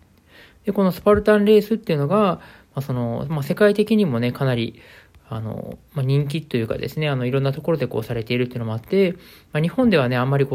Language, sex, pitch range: Japanese, male, 125-175 Hz